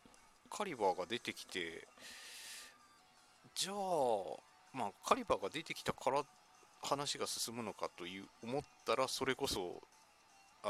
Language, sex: Japanese, male